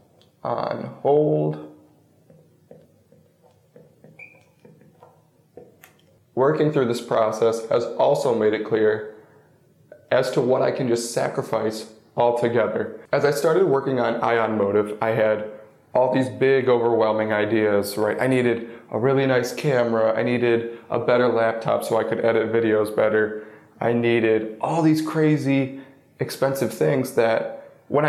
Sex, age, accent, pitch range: male, 20-39, American, 110-135 Hz